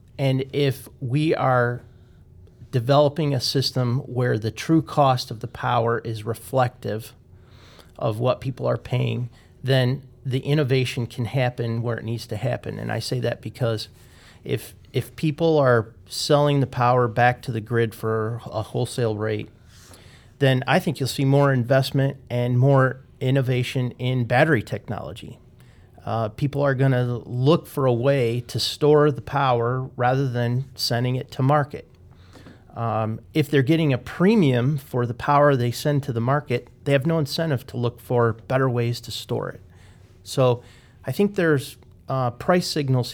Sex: male